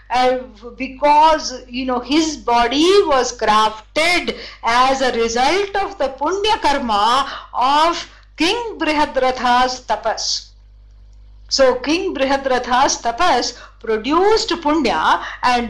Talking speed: 100 wpm